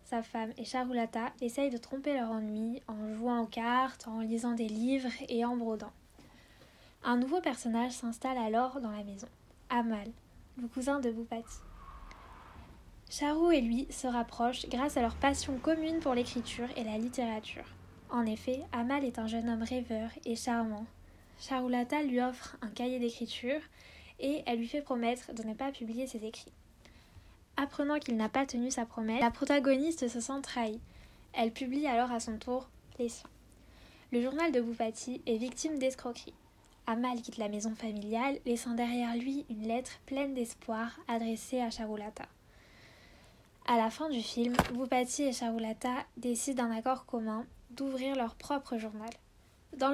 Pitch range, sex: 230-265 Hz, female